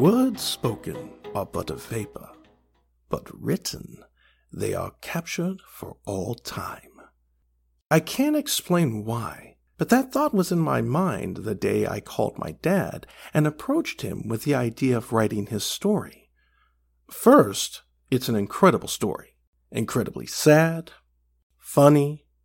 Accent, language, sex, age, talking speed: American, English, male, 50-69, 130 wpm